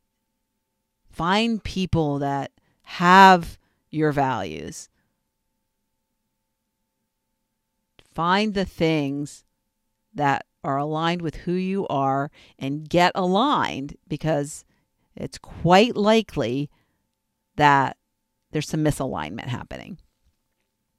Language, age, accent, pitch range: English, 50-69, American, 140-175 Hz